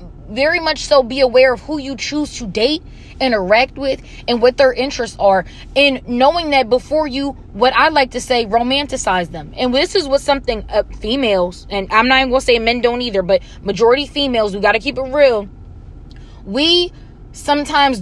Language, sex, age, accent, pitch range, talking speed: English, female, 20-39, American, 250-300 Hz, 190 wpm